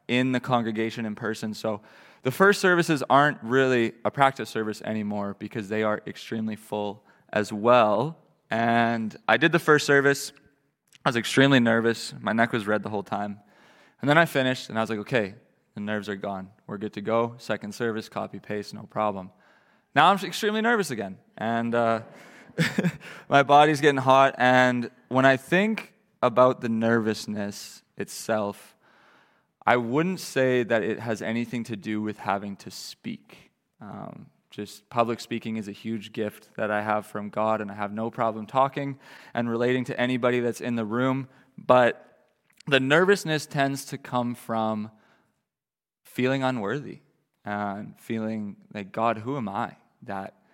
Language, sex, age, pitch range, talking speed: English, male, 20-39, 105-130 Hz, 165 wpm